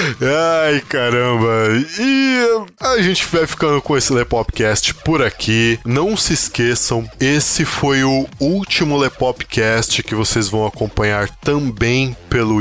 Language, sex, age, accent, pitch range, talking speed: Portuguese, male, 20-39, Brazilian, 110-135 Hz, 130 wpm